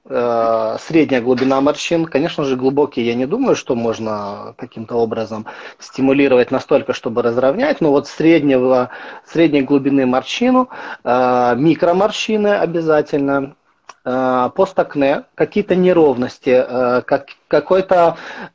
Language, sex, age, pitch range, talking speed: German, male, 30-49, 125-170 Hz, 90 wpm